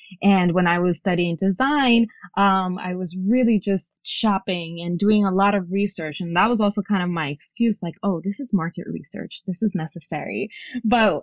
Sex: female